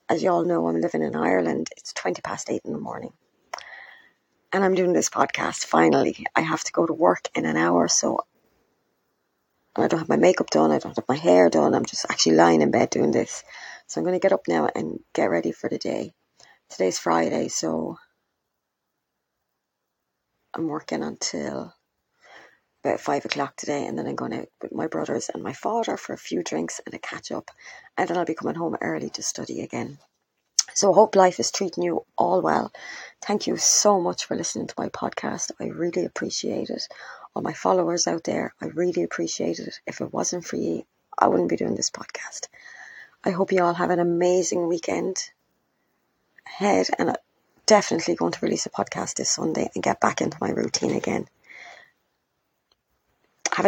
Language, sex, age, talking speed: English, female, 30-49, 190 wpm